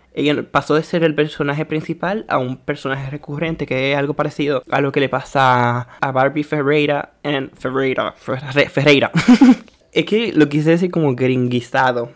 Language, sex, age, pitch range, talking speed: Spanish, male, 20-39, 140-165 Hz, 165 wpm